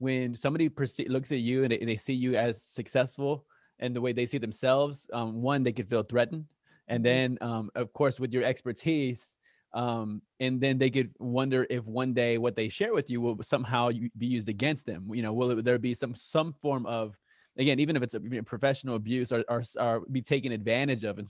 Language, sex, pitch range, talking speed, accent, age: English, male, 115-135 Hz, 215 wpm, American, 20-39